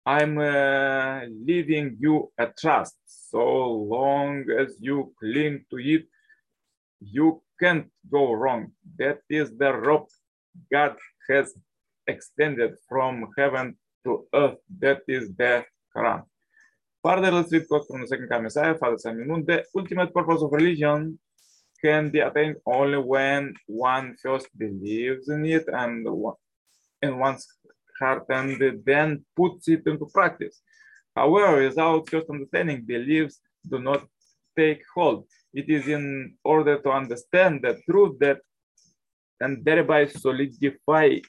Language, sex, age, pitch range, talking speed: English, male, 20-39, 135-160 Hz, 120 wpm